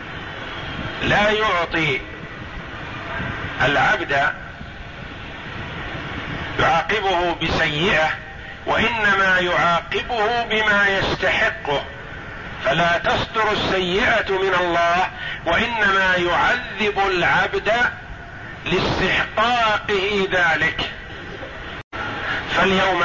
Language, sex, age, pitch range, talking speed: Arabic, male, 50-69, 150-180 Hz, 50 wpm